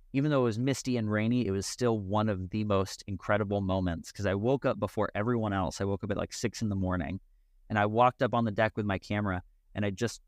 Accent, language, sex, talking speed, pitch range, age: American, English, male, 265 wpm, 95-115 Hz, 30-49